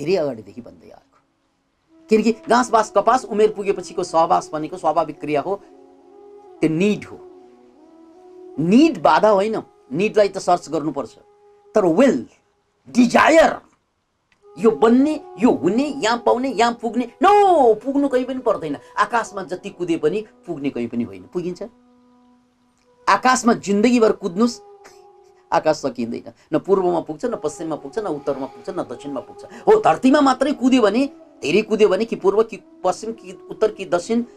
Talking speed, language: 115 wpm, English